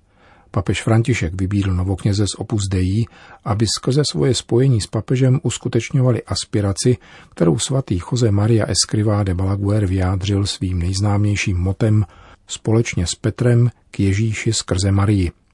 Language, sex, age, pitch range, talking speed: Czech, male, 40-59, 95-115 Hz, 125 wpm